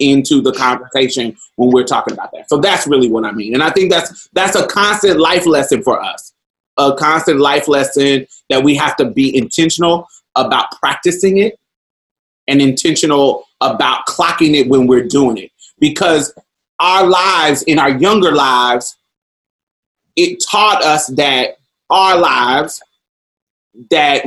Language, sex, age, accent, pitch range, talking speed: English, male, 30-49, American, 130-190 Hz, 150 wpm